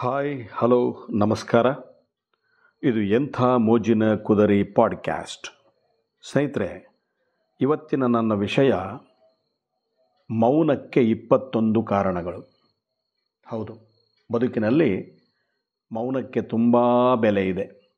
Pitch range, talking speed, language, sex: 110-140 Hz, 70 wpm, Kannada, male